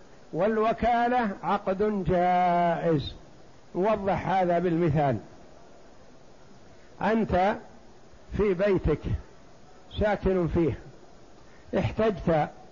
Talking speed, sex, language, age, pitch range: 55 wpm, male, Arabic, 60-79, 165-205 Hz